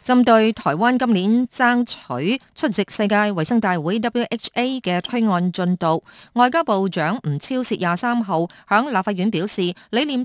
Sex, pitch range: female, 175-230 Hz